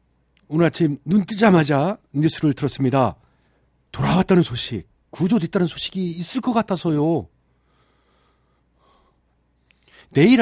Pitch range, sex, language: 105-170 Hz, male, Korean